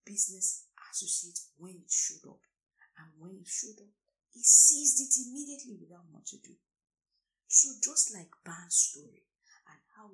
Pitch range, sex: 185-250 Hz, female